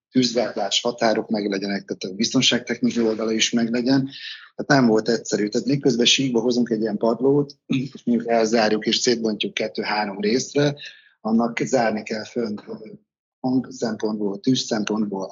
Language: Hungarian